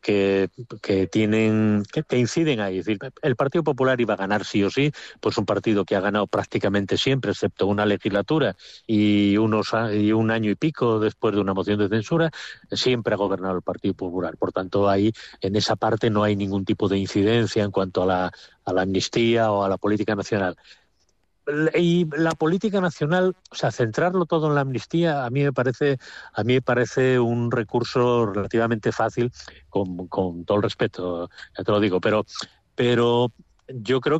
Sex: male